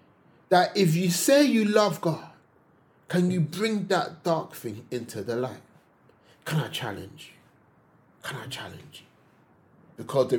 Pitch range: 115-165 Hz